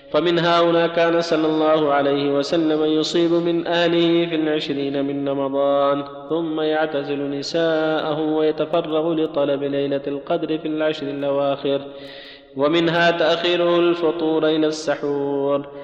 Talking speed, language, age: 110 wpm, Arabic, 20-39